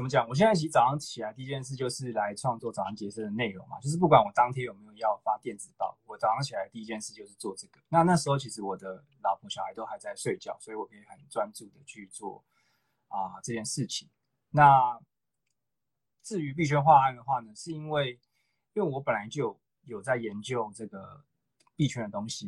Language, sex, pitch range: Chinese, male, 115-150 Hz